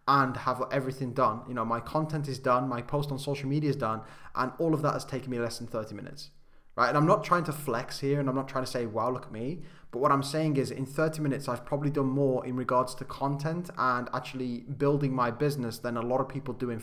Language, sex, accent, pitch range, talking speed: English, male, British, 120-140 Hz, 265 wpm